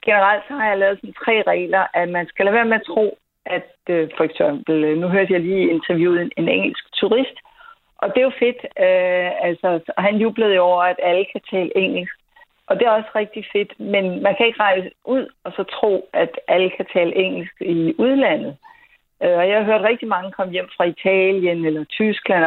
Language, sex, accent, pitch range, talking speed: English, female, Danish, 175-215 Hz, 215 wpm